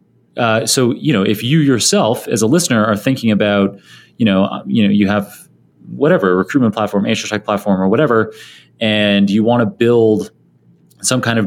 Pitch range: 100-125 Hz